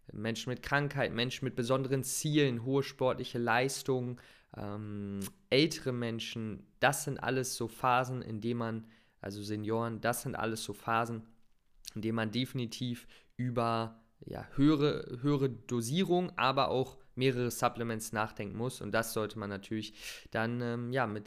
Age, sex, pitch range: 20-39, male, 110-130 Hz